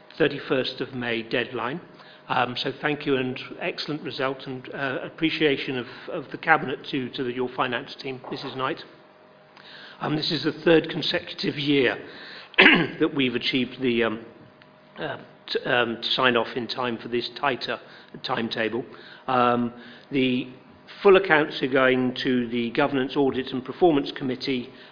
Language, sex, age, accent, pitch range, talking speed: English, male, 40-59, British, 125-150 Hz, 150 wpm